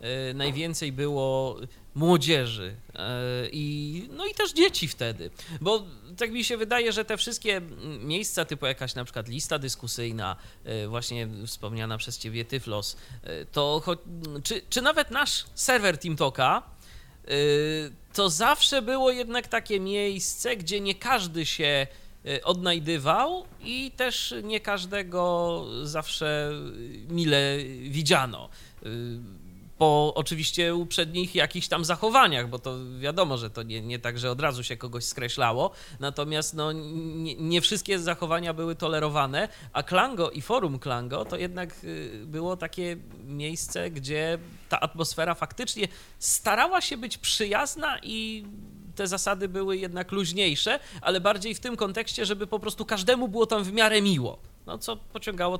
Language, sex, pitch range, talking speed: Polish, male, 130-200 Hz, 135 wpm